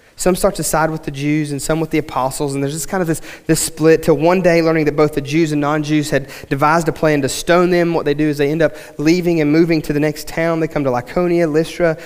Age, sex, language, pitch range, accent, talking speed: 30-49, male, English, 160-230 Hz, American, 280 wpm